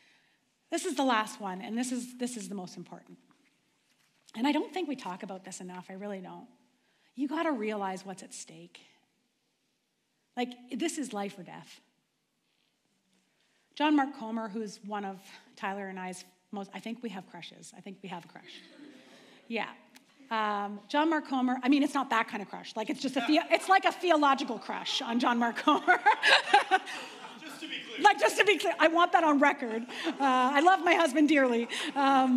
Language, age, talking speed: English, 30-49, 190 wpm